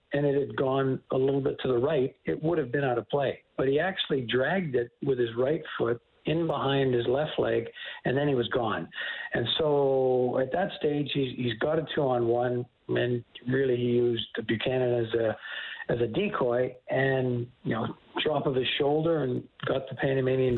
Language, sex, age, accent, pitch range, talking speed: English, male, 60-79, American, 120-150 Hz, 190 wpm